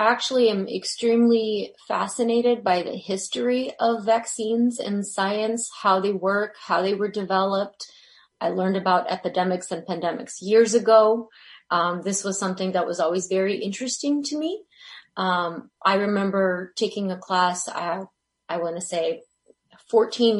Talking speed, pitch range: 145 wpm, 175-220 Hz